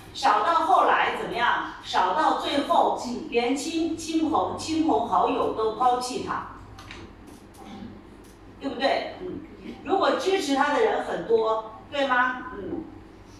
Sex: female